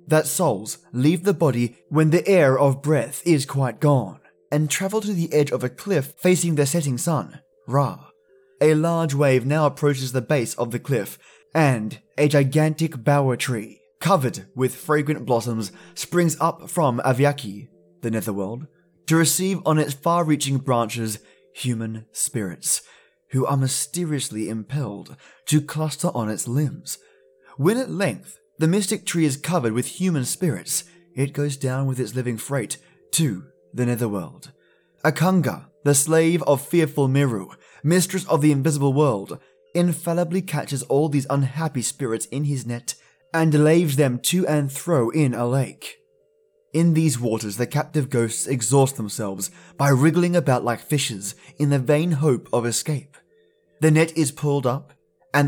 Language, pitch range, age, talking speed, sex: English, 125-160 Hz, 20-39, 155 wpm, male